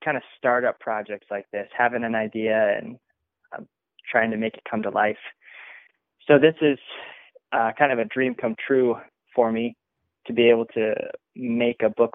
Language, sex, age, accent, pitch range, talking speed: English, male, 20-39, American, 110-130 Hz, 190 wpm